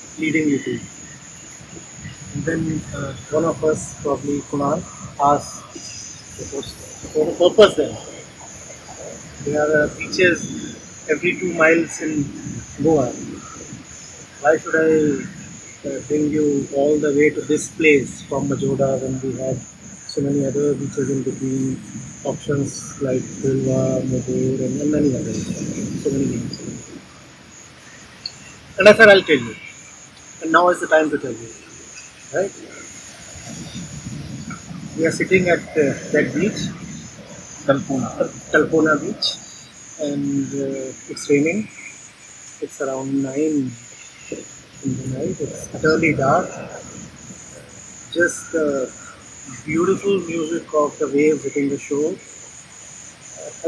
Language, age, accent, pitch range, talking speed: English, 30-49, Indian, 135-155 Hz, 115 wpm